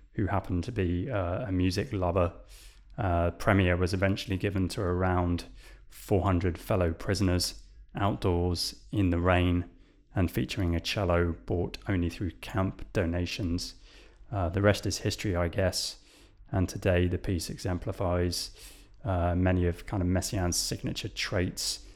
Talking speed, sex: 140 wpm, male